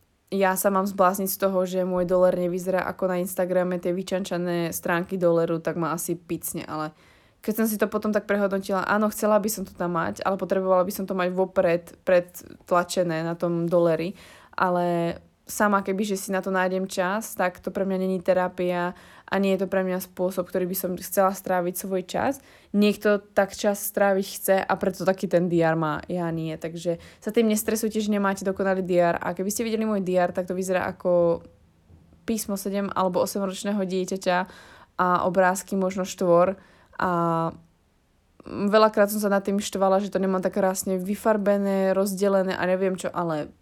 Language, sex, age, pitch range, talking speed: Slovak, female, 20-39, 175-195 Hz, 185 wpm